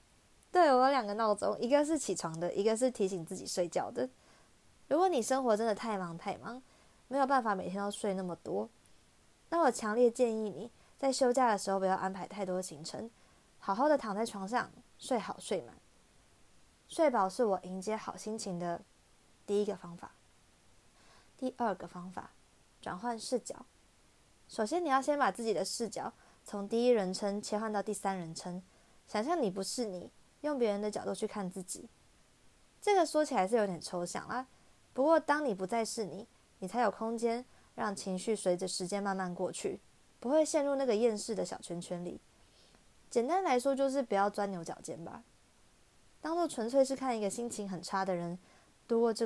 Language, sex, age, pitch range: Chinese, female, 20-39, 190-250 Hz